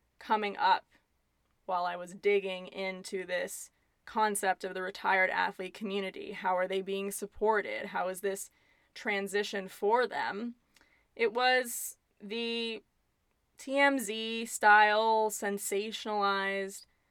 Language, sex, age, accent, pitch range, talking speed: English, female, 20-39, American, 190-225 Hz, 105 wpm